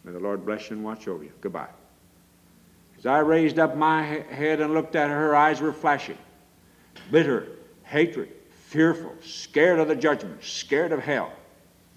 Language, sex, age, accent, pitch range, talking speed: English, male, 60-79, American, 135-160 Hz, 170 wpm